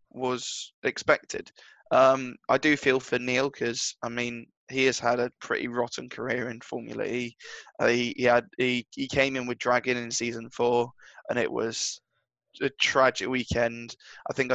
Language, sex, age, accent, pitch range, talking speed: English, male, 10-29, British, 120-135 Hz, 175 wpm